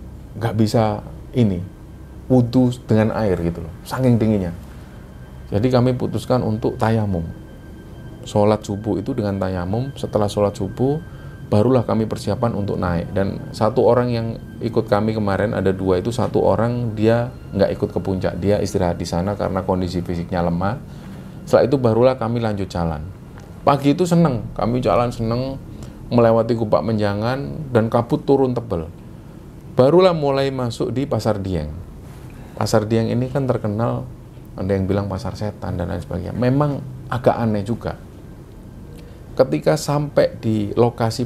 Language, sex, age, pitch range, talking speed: Indonesian, male, 30-49, 100-130 Hz, 145 wpm